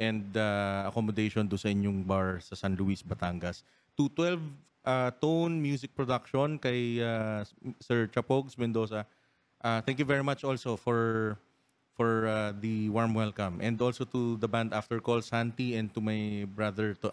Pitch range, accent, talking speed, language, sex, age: 100-125 Hz, native, 165 wpm, Filipino, male, 30-49